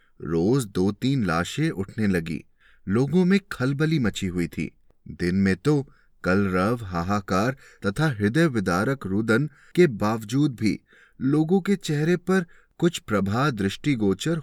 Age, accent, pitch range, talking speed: 30-49, native, 105-165 Hz, 130 wpm